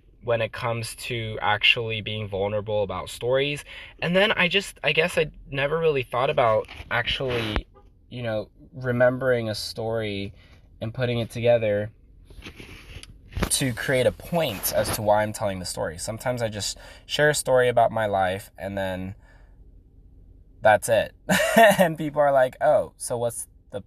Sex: male